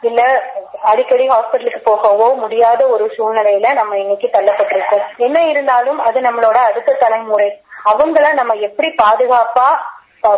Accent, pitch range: native, 220-275 Hz